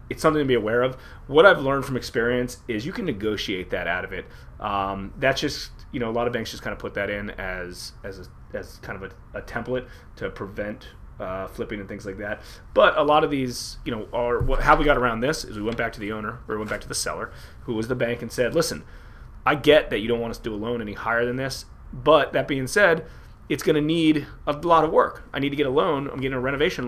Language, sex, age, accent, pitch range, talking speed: English, male, 30-49, American, 100-125 Hz, 275 wpm